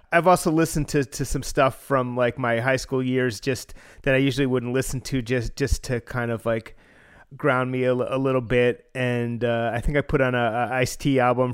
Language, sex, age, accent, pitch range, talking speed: English, male, 30-49, American, 125-155 Hz, 235 wpm